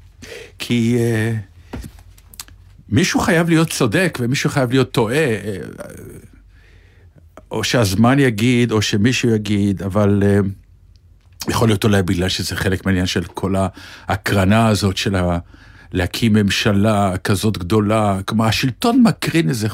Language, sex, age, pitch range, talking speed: Hebrew, male, 60-79, 95-120 Hz, 115 wpm